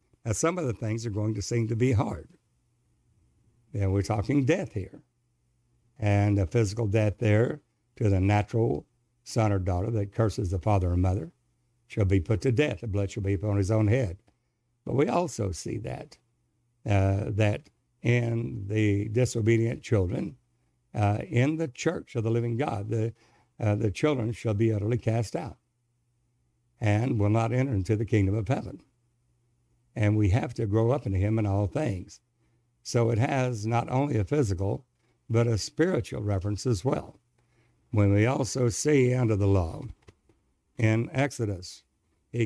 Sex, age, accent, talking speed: male, 60-79, American, 170 wpm